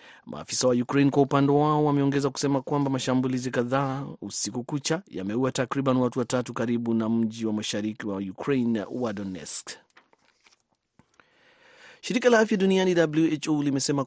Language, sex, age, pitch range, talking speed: Swahili, male, 30-49, 115-135 Hz, 130 wpm